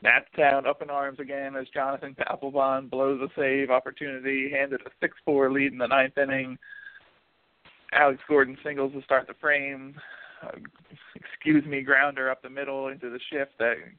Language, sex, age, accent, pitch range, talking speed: English, male, 40-59, American, 130-140 Hz, 165 wpm